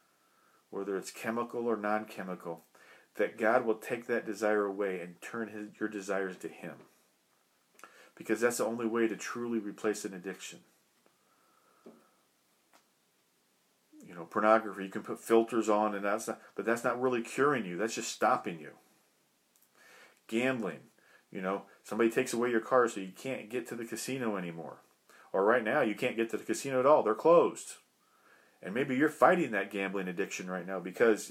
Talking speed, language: 170 wpm, English